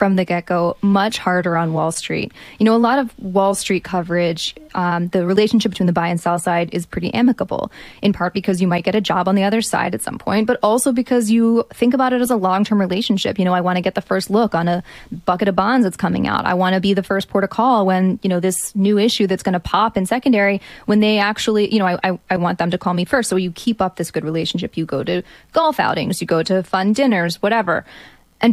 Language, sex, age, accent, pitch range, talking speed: English, female, 20-39, American, 175-215 Hz, 265 wpm